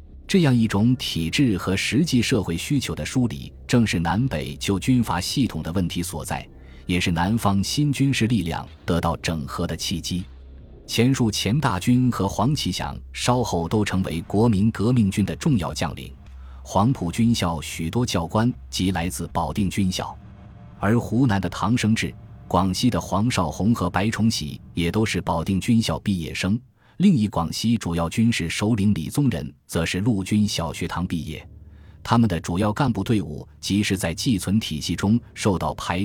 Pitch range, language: 85-115 Hz, Chinese